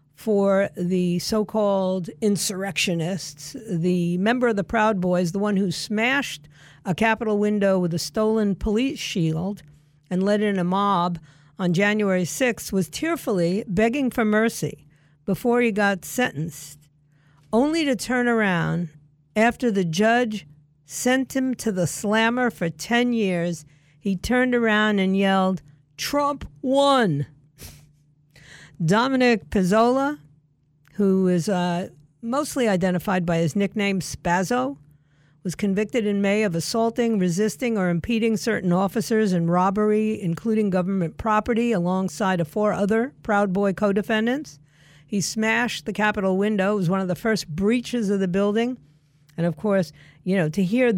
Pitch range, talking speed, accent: 170-225 Hz, 140 wpm, American